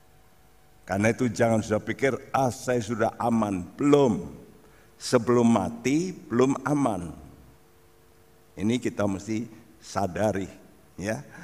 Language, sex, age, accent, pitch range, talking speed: Indonesian, male, 60-79, native, 110-155 Hz, 100 wpm